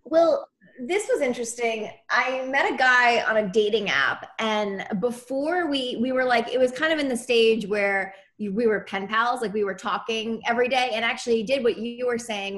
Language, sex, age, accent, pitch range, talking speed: English, female, 20-39, American, 200-245 Hz, 205 wpm